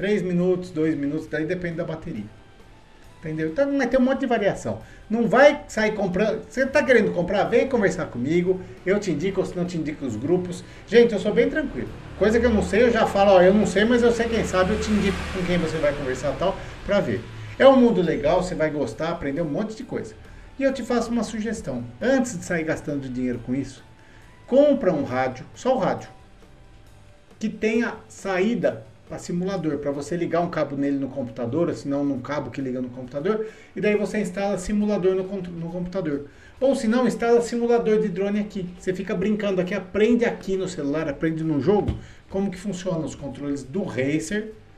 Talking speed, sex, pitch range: 210 wpm, male, 145-210 Hz